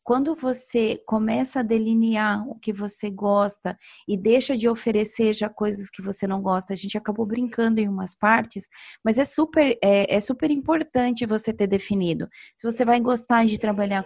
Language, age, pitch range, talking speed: Portuguese, 20-39, 210-275 Hz, 170 wpm